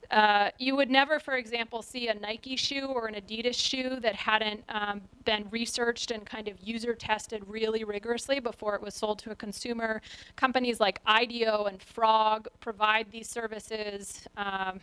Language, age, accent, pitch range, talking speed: Portuguese, 30-49, American, 210-245 Hz, 170 wpm